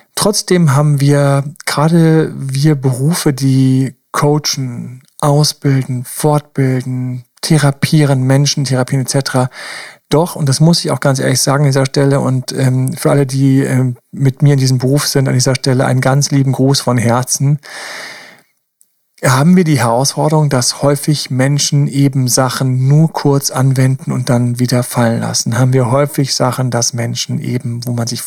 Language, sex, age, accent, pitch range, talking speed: German, male, 40-59, German, 130-145 Hz, 155 wpm